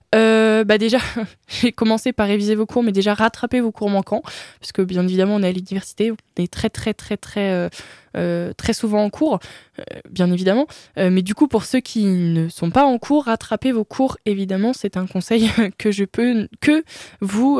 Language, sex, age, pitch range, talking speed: French, female, 20-39, 195-235 Hz, 210 wpm